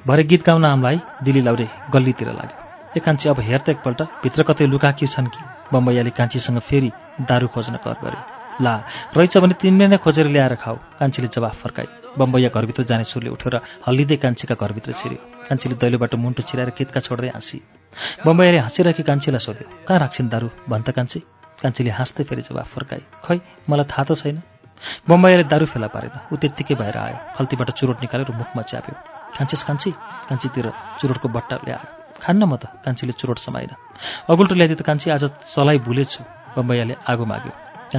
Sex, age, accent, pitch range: male, 30-49, Indian, 120-155 Hz